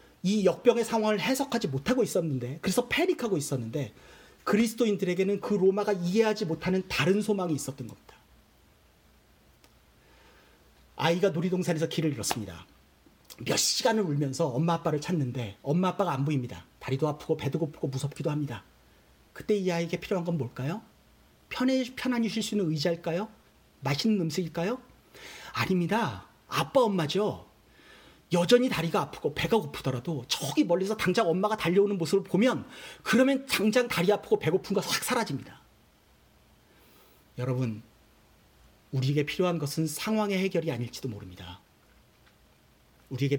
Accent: native